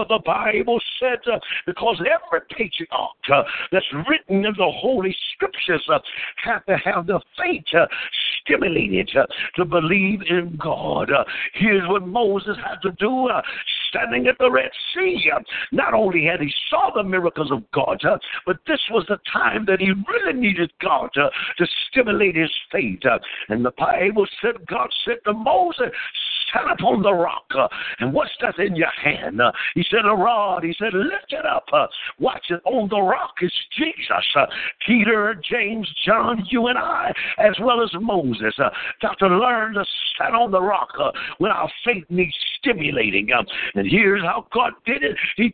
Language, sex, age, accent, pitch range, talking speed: English, male, 60-79, American, 180-235 Hz, 180 wpm